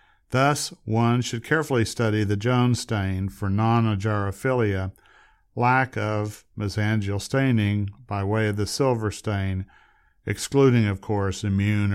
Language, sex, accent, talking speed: English, male, American, 120 wpm